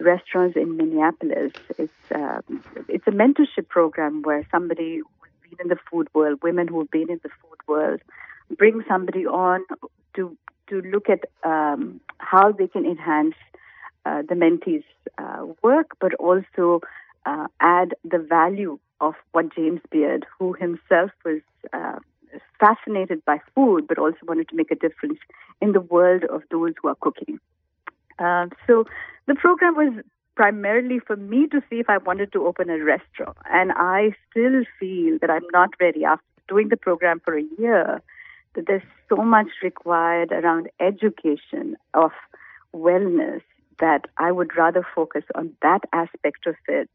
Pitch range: 165-205 Hz